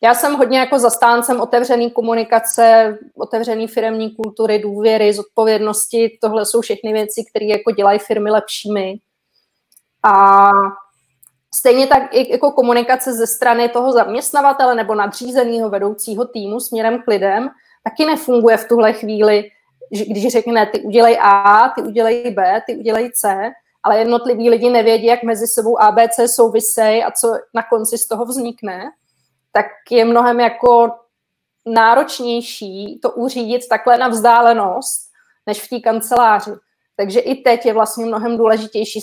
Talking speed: 140 wpm